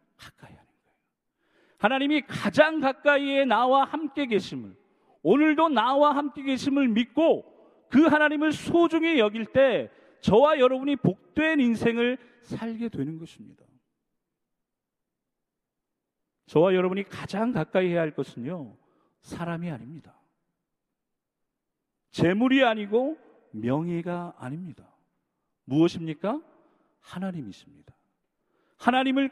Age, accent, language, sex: 40-59, native, Korean, male